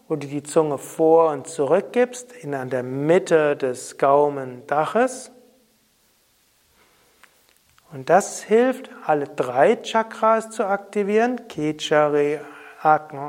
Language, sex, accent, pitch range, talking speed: German, male, German, 145-210 Hz, 110 wpm